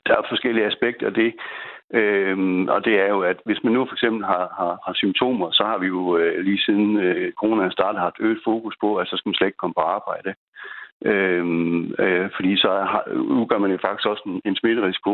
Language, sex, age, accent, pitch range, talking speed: Danish, male, 60-79, native, 95-115 Hz, 220 wpm